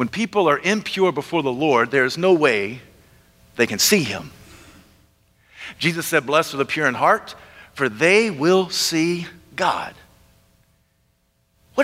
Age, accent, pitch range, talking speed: 50-69, American, 145-235 Hz, 145 wpm